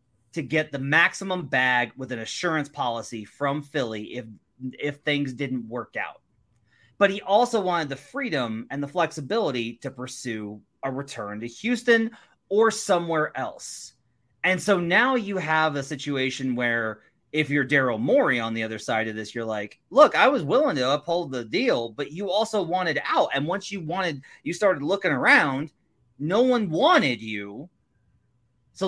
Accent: American